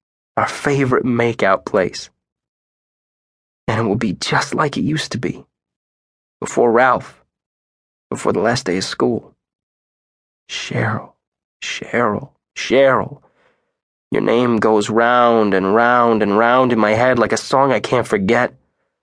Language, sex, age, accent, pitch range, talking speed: English, male, 20-39, American, 70-120 Hz, 130 wpm